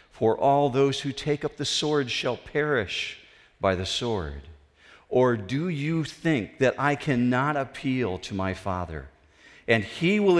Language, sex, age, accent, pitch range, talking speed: English, male, 50-69, American, 90-140 Hz, 155 wpm